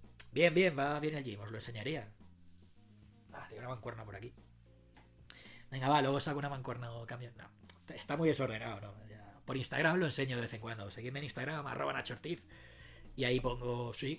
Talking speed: 195 wpm